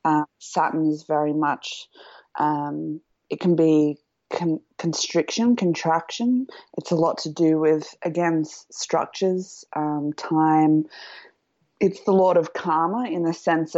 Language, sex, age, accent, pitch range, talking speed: English, female, 20-39, Australian, 150-170 Hz, 125 wpm